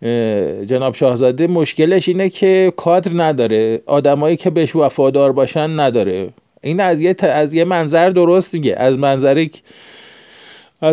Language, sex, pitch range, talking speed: Persian, male, 130-170 Hz, 135 wpm